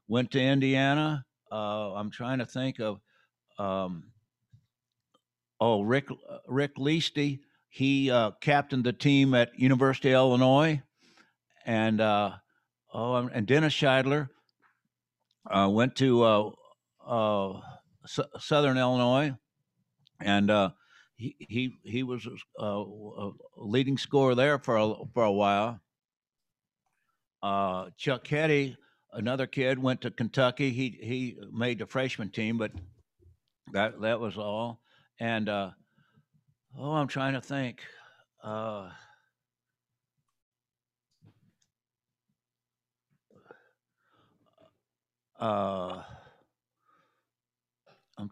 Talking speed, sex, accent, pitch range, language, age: 100 wpm, male, American, 105-135 Hz, English, 60-79